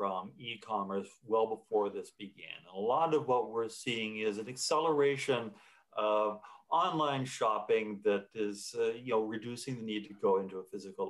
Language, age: English, 40-59